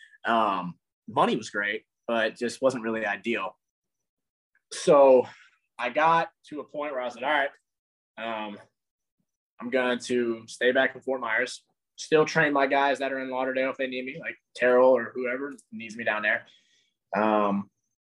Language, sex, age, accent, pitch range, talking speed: English, male, 20-39, American, 115-145 Hz, 170 wpm